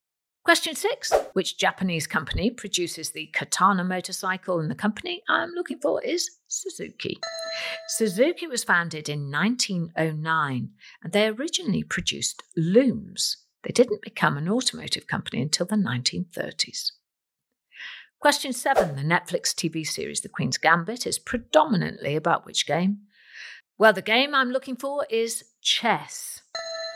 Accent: British